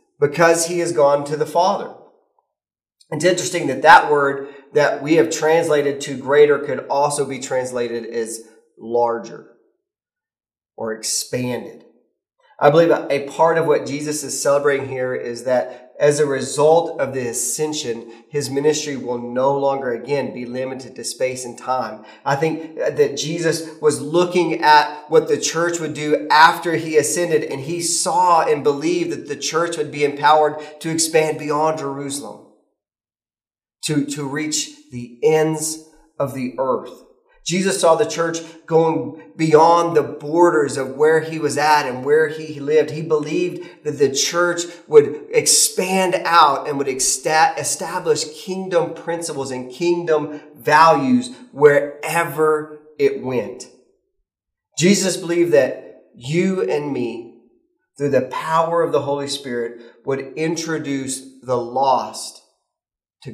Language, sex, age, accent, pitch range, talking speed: English, male, 30-49, American, 135-170 Hz, 140 wpm